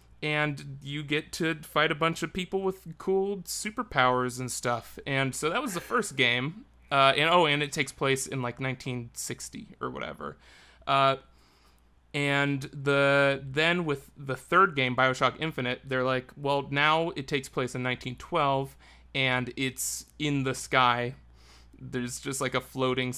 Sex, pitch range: male, 120-145 Hz